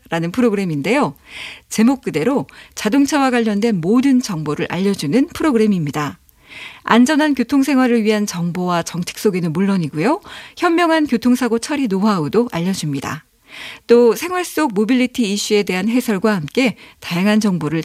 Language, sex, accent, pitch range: Korean, female, native, 190-260 Hz